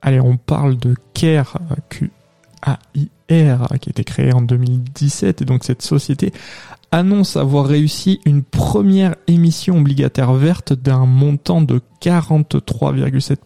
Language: French